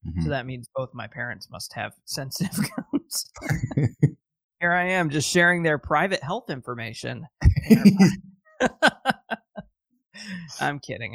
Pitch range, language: 140-200 Hz, English